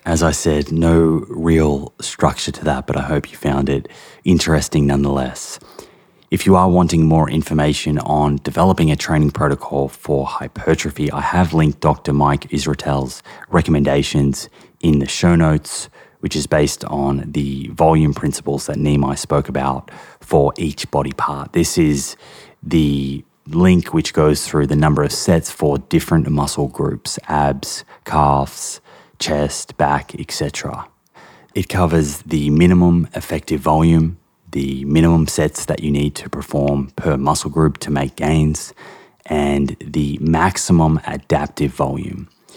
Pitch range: 70-80 Hz